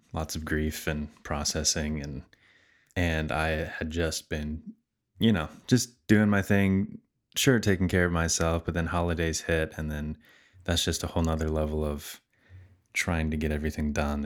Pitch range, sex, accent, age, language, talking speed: 80-95 Hz, male, American, 20-39, English, 170 wpm